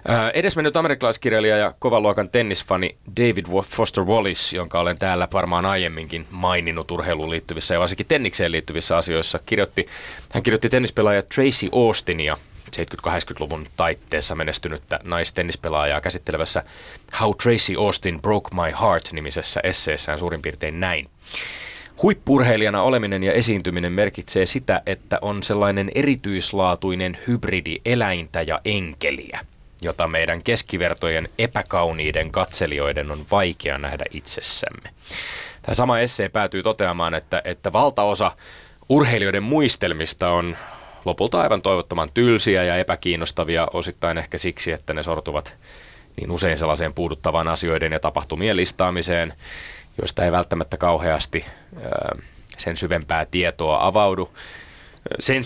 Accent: native